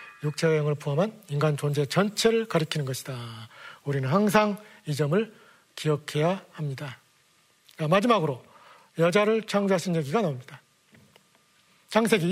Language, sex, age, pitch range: Korean, male, 40-59, 150-205 Hz